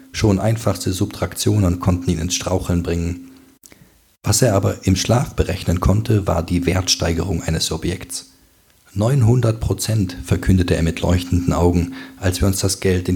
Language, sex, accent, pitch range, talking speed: German, male, German, 90-105 Hz, 150 wpm